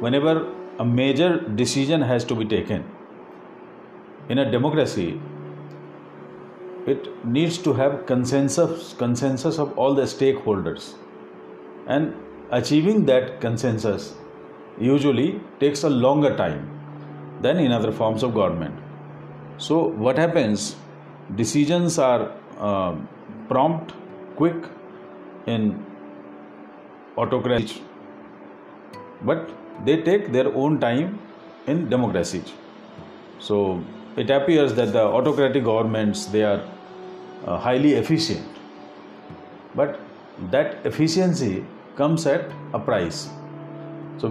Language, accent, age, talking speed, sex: Hindi, native, 50-69, 100 wpm, male